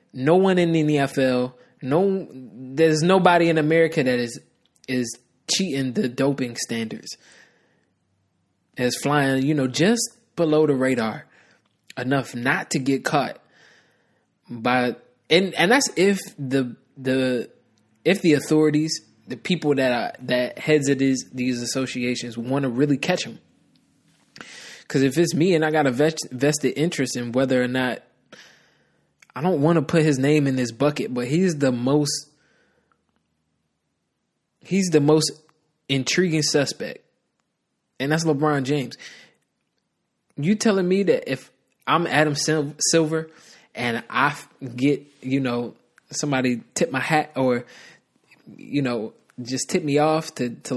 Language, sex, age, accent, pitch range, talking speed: English, male, 20-39, American, 125-155 Hz, 140 wpm